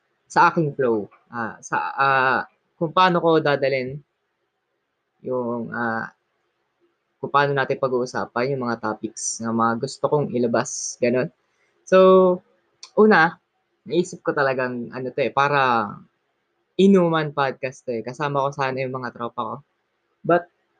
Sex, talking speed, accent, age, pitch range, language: female, 130 wpm, native, 20-39, 115-155 Hz, Filipino